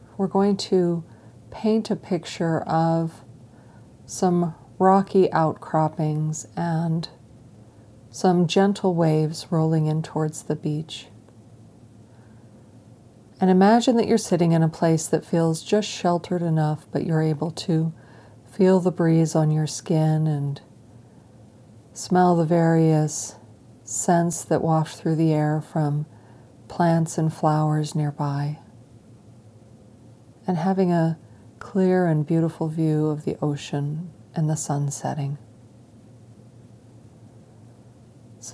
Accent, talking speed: American, 110 wpm